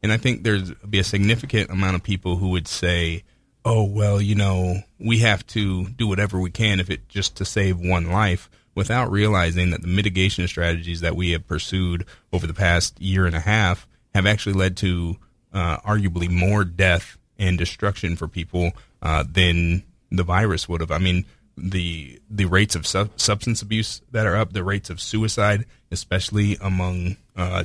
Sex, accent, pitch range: male, American, 90-105 Hz